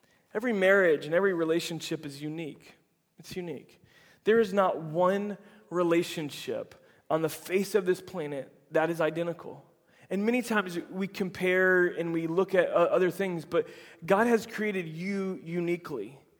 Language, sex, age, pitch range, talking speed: English, male, 20-39, 160-190 Hz, 150 wpm